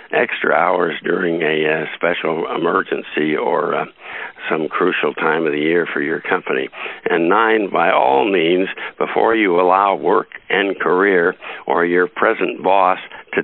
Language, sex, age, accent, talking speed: English, male, 60-79, American, 150 wpm